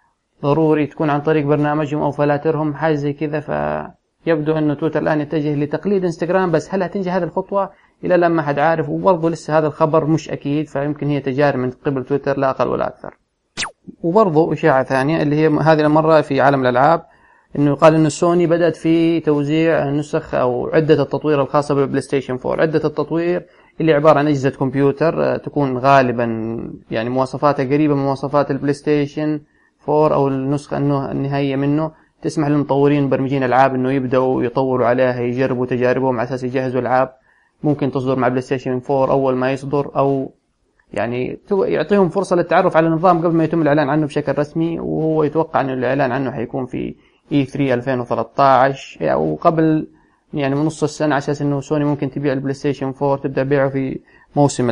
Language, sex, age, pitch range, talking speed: English, male, 20-39, 135-155 Hz, 165 wpm